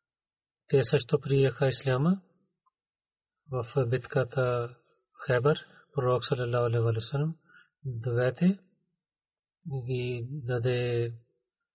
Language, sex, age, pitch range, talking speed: Bulgarian, male, 40-59, 130-160 Hz, 85 wpm